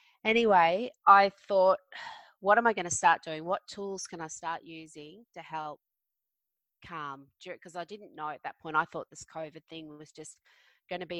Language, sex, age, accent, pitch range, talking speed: English, female, 20-39, Australian, 160-190 Hz, 195 wpm